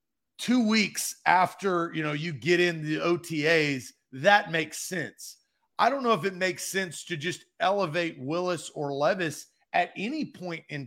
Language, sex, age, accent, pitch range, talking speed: English, male, 40-59, American, 150-190 Hz, 165 wpm